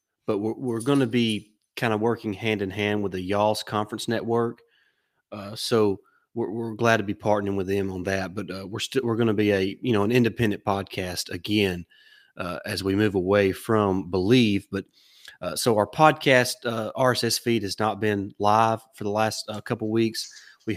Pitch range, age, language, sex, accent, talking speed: 100-115 Hz, 30-49, English, male, American, 205 wpm